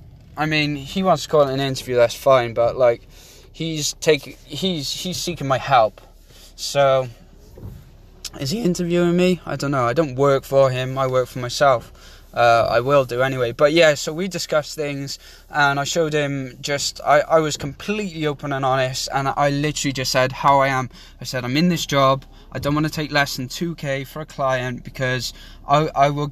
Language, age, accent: English, 10-29, British